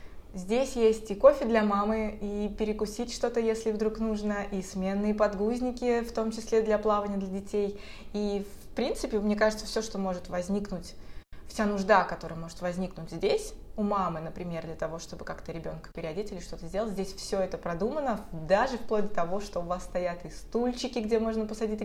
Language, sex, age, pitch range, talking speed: Russian, female, 20-39, 180-215 Hz, 180 wpm